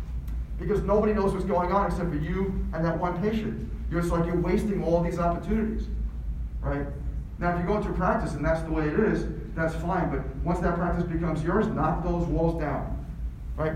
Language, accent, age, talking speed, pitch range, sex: English, American, 40-59, 205 wpm, 160-195 Hz, male